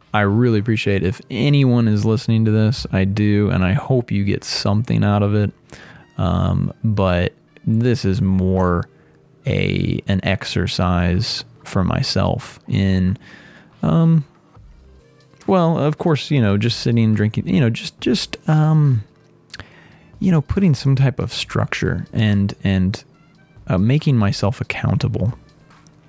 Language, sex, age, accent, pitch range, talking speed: English, male, 20-39, American, 100-145 Hz, 140 wpm